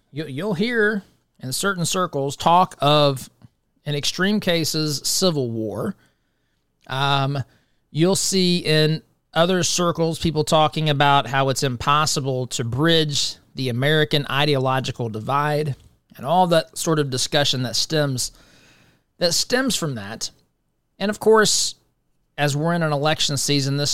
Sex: male